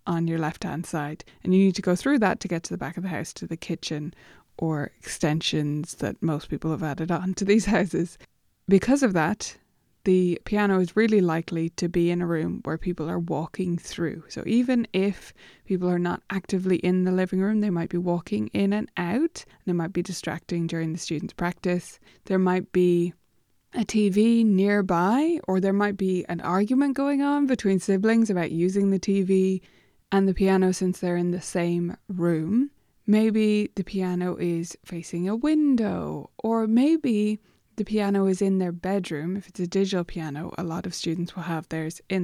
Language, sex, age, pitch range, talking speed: English, female, 20-39, 175-215 Hz, 190 wpm